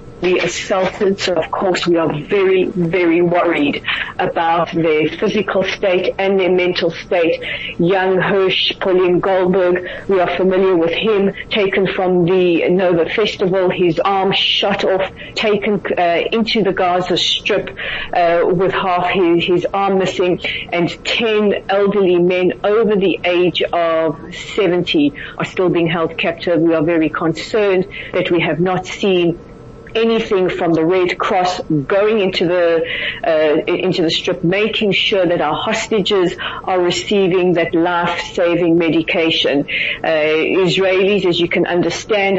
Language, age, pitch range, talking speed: English, 40-59, 170-195 Hz, 140 wpm